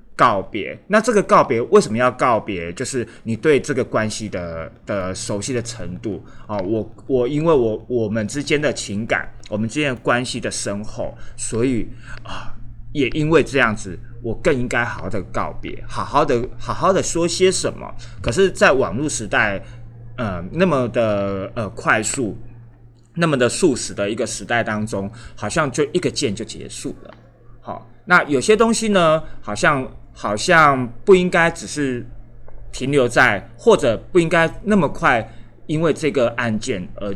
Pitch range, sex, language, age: 110-145 Hz, male, Chinese, 30-49